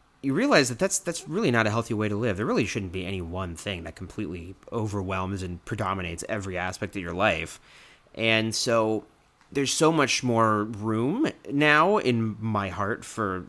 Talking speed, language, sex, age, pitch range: 180 wpm, English, male, 30-49, 95-120 Hz